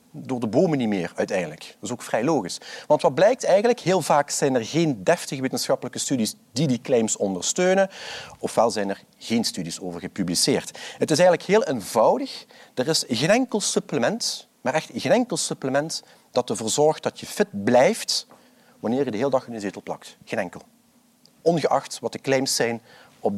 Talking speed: 185 wpm